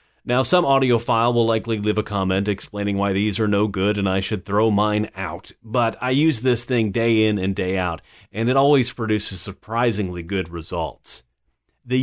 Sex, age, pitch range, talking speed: male, 30-49, 100-135 Hz, 190 wpm